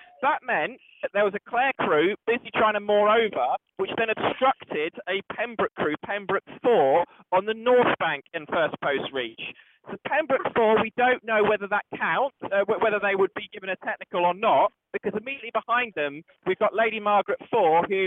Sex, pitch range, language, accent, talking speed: male, 185-225 Hz, English, British, 195 wpm